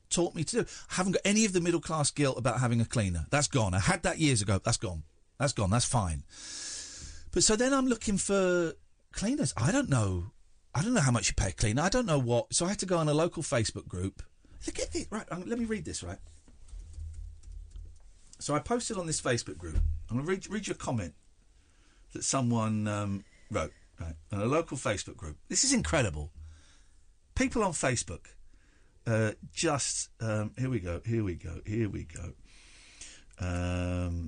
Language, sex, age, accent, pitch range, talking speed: English, male, 50-69, British, 85-130 Hz, 200 wpm